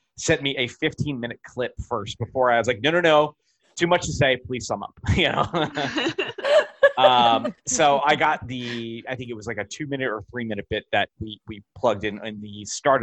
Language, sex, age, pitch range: English, male, 30-49, 105-140 Hz